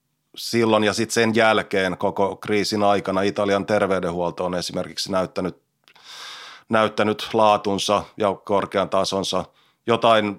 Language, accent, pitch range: Finnish, native, 95-105 Hz